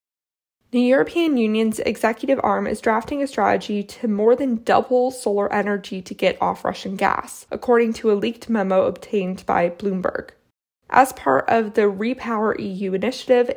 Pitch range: 205-250 Hz